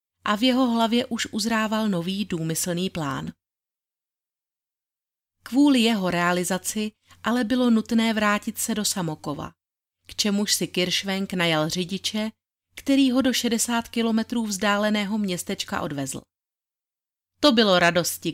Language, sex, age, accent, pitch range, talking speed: Czech, female, 30-49, native, 180-225 Hz, 120 wpm